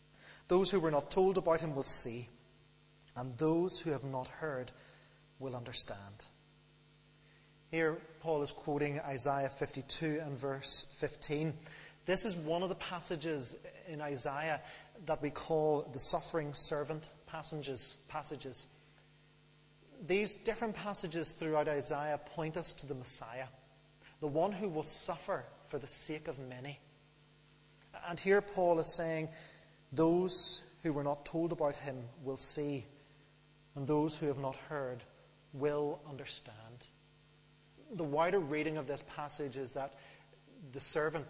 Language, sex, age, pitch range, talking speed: English, male, 30-49, 140-160 Hz, 135 wpm